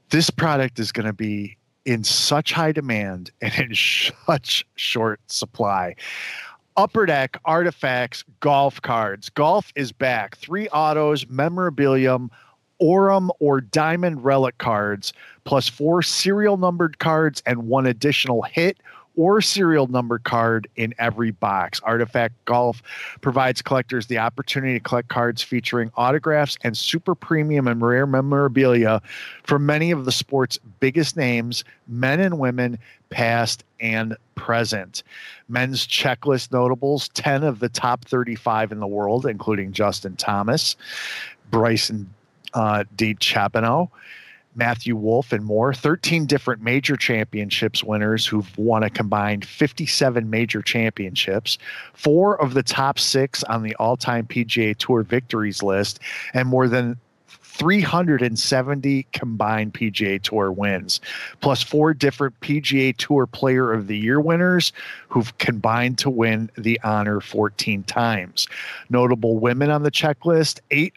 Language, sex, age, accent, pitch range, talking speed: English, male, 40-59, American, 115-145 Hz, 130 wpm